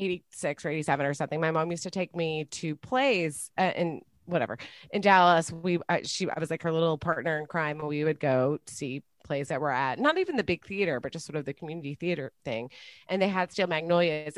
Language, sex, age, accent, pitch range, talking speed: English, female, 30-49, American, 155-205 Hz, 240 wpm